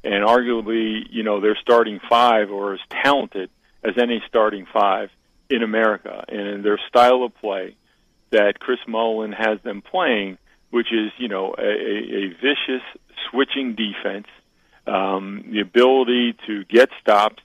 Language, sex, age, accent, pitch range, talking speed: English, male, 50-69, American, 105-125 Hz, 145 wpm